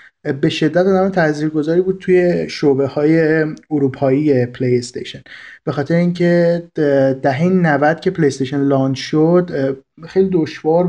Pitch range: 140-175 Hz